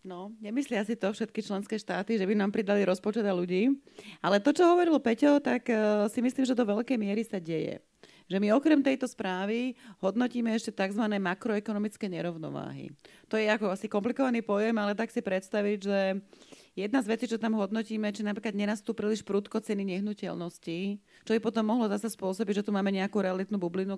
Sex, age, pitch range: female, 30-49, 190-225 Hz